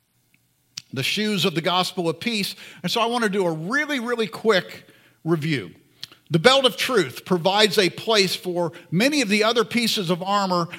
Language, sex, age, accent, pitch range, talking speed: English, male, 50-69, American, 175-225 Hz, 185 wpm